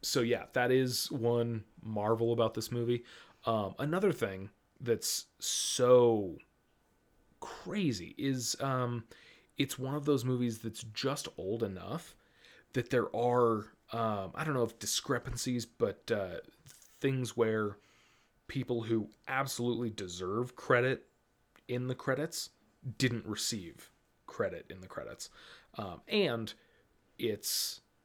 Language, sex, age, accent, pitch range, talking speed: English, male, 30-49, American, 105-130 Hz, 120 wpm